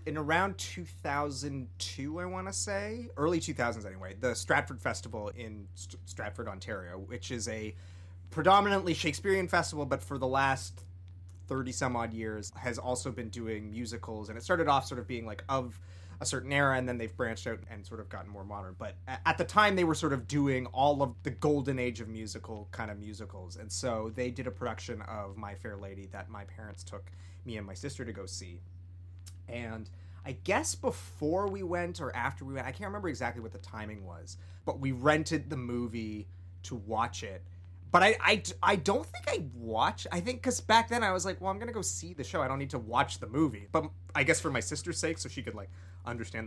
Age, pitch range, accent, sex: 30-49, 90-130 Hz, American, male